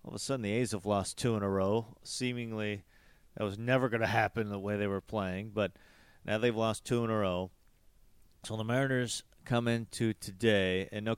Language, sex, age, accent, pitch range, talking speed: English, male, 40-59, American, 100-115 Hz, 215 wpm